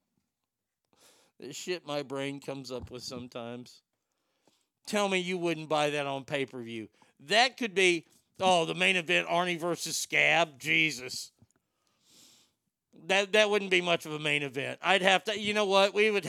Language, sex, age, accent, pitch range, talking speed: English, male, 50-69, American, 145-185 Hz, 170 wpm